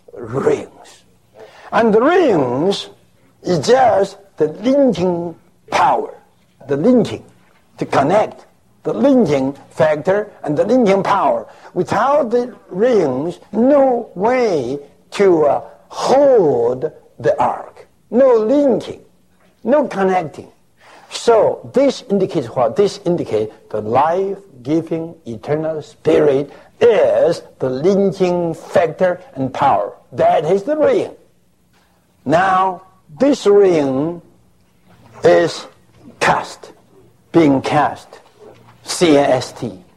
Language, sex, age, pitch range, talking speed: English, male, 60-79, 155-245 Hz, 95 wpm